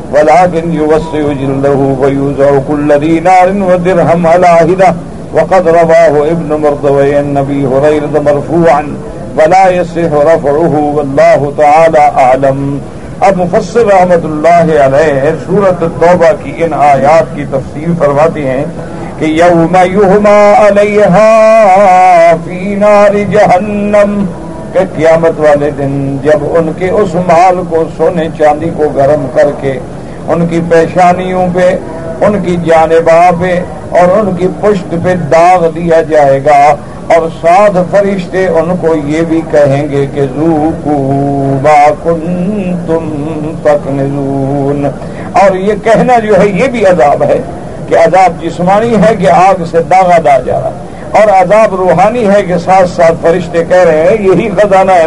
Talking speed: 105 wpm